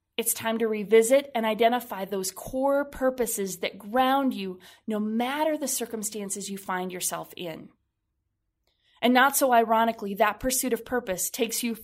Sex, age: female, 20-39